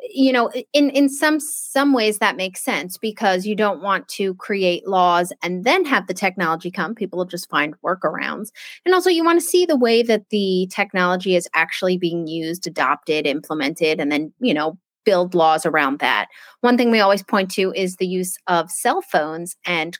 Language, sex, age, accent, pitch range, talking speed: English, female, 30-49, American, 175-230 Hz, 200 wpm